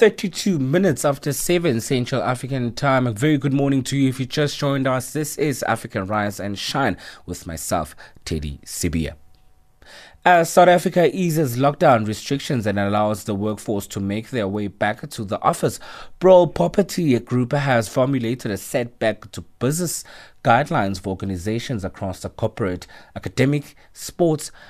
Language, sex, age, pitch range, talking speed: English, male, 30-49, 95-135 Hz, 155 wpm